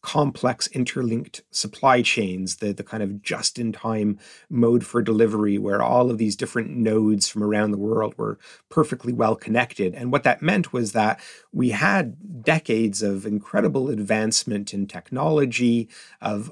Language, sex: English, male